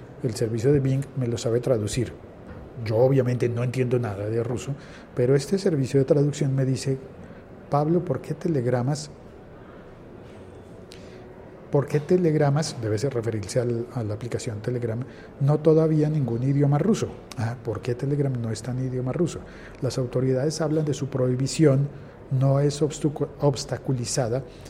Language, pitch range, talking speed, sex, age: Spanish, 120-145 Hz, 145 wpm, male, 50-69